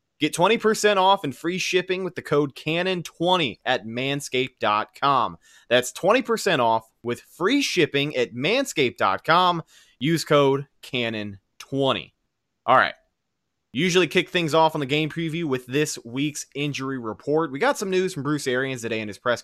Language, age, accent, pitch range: English, 20-39, American, 105-150 Hz